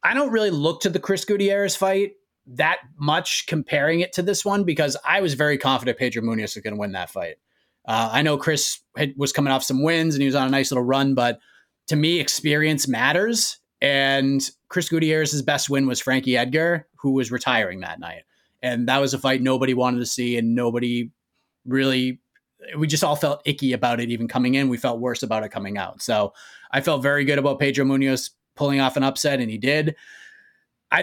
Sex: male